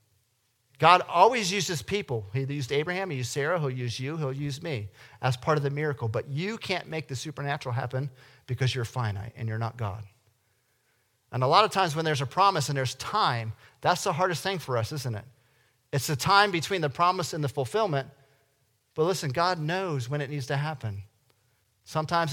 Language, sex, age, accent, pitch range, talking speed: English, male, 40-59, American, 120-150 Hz, 200 wpm